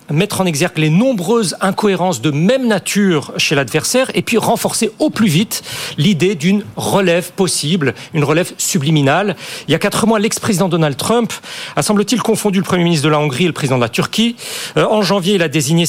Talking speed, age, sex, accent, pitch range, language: 195 wpm, 40-59, male, French, 150-195 Hz, French